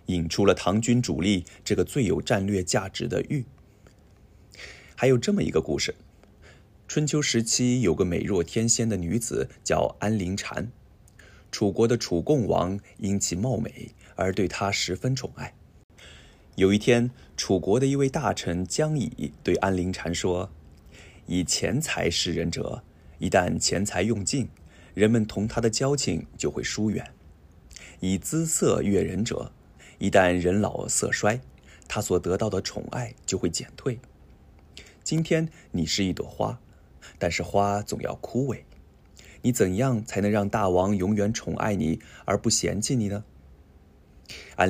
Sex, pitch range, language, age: male, 85-110 Hz, Japanese, 20-39